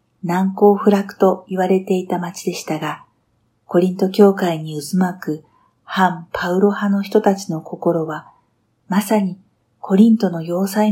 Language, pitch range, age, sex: Japanese, 125-200 Hz, 50-69, female